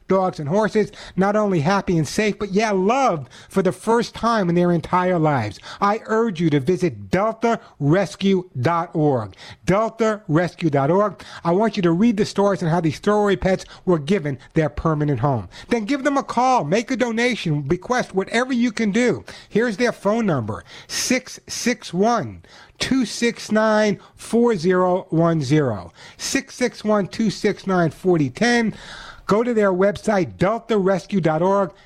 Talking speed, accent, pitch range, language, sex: 125 wpm, American, 150-215 Hz, English, male